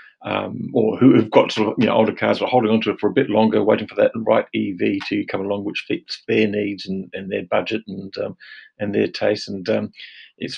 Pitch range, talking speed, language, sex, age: 100-125 Hz, 245 wpm, English, male, 50-69